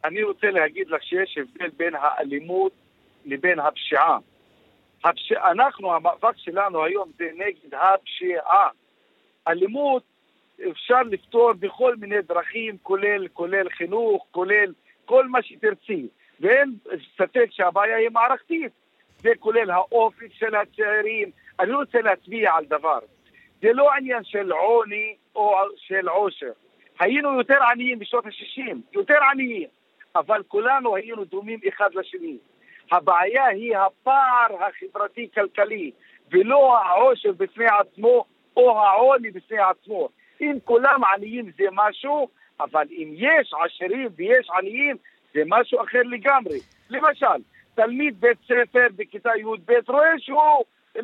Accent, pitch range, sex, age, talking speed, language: Lebanese, 205-300 Hz, male, 50-69, 120 wpm, Hebrew